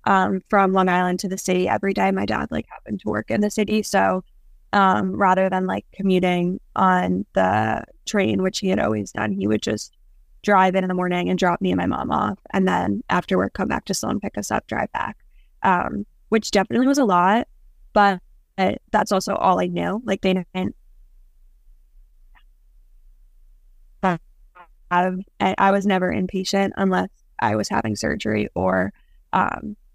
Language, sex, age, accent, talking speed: English, female, 10-29, American, 175 wpm